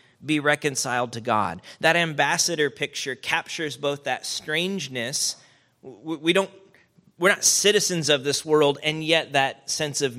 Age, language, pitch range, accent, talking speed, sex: 30-49, English, 125-165 Hz, American, 130 wpm, male